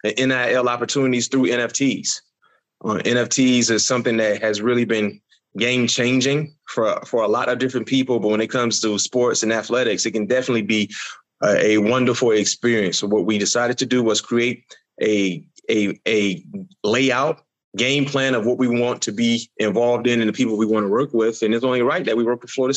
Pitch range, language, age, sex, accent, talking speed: 110-130 Hz, English, 30-49, male, American, 205 wpm